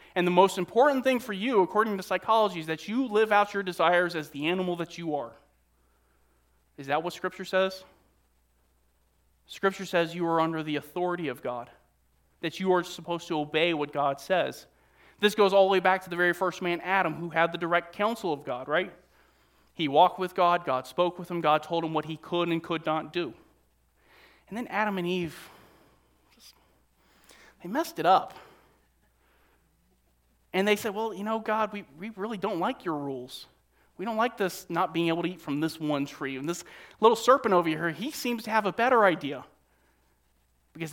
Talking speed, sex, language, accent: 195 wpm, male, English, American